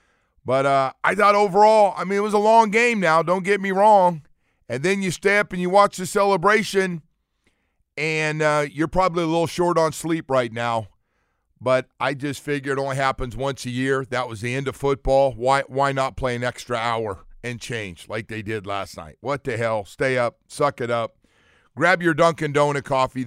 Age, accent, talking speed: 40-59, American, 210 wpm